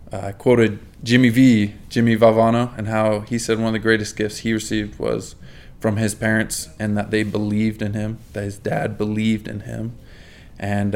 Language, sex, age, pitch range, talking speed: English, male, 20-39, 105-120 Hz, 185 wpm